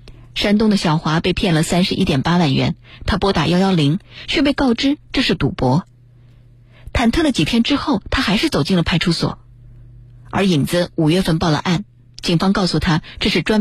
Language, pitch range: Chinese, 130-190 Hz